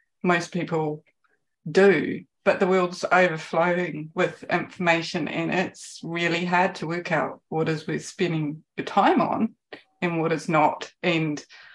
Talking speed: 145 wpm